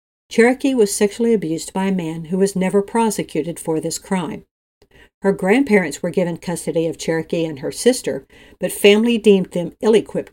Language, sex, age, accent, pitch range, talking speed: English, female, 60-79, American, 165-210 Hz, 175 wpm